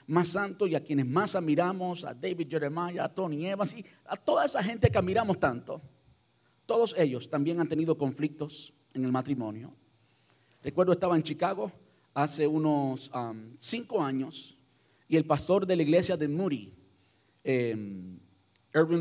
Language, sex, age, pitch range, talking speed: Spanish, male, 50-69, 145-190 Hz, 150 wpm